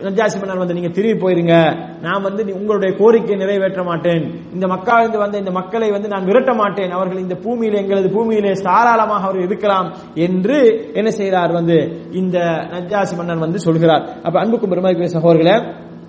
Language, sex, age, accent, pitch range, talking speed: English, male, 30-49, Indian, 180-220 Hz, 155 wpm